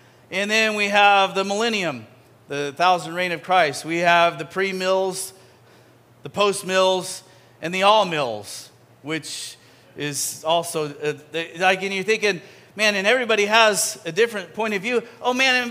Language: English